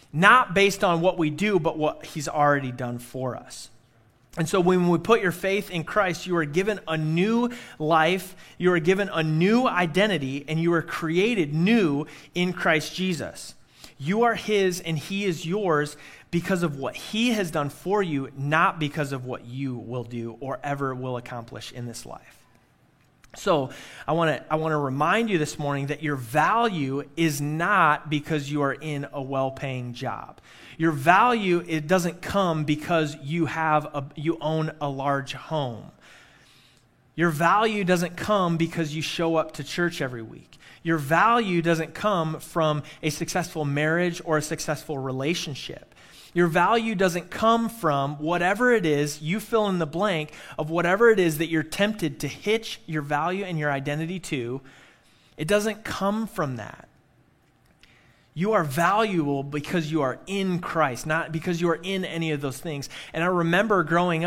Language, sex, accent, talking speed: English, male, American, 170 wpm